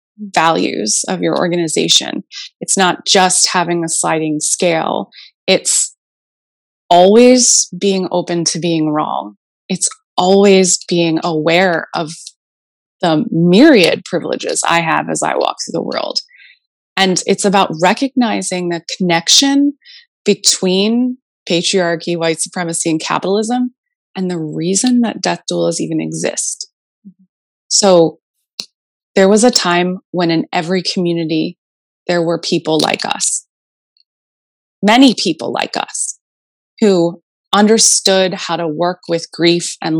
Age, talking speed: 20-39, 120 wpm